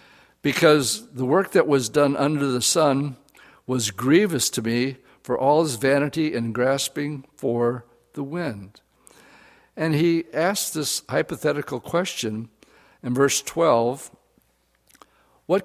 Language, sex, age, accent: English, male, 60-79, American